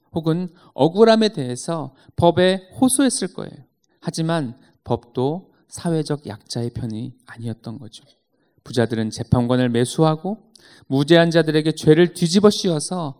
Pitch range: 130-180 Hz